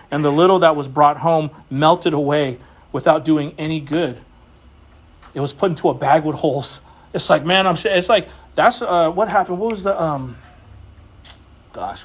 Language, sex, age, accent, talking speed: English, male, 40-59, American, 180 wpm